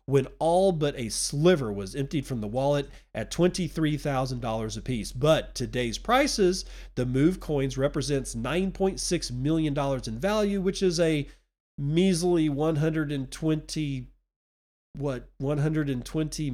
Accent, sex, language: American, male, English